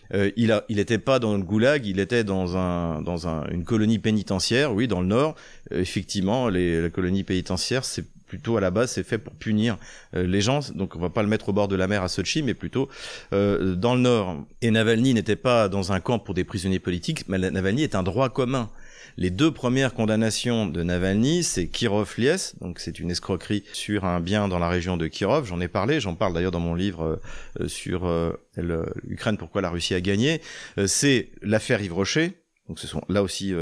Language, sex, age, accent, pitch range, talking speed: French, male, 40-59, French, 95-120 Hz, 220 wpm